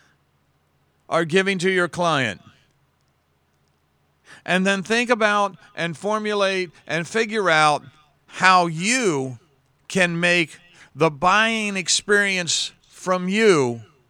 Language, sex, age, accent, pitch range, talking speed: English, male, 50-69, American, 115-175 Hz, 100 wpm